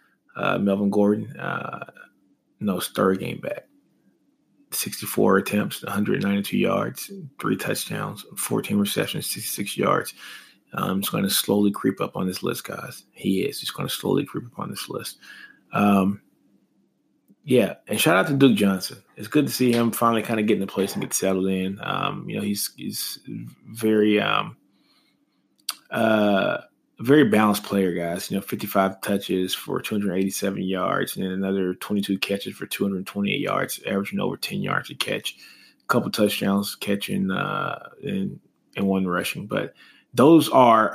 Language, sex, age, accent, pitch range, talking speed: English, male, 20-39, American, 95-110 Hz, 160 wpm